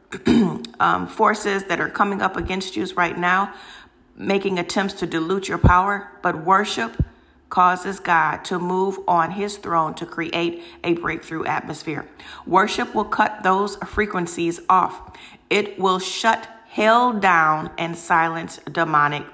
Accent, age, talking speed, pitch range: American, 40-59, 135 wpm, 170-195 Hz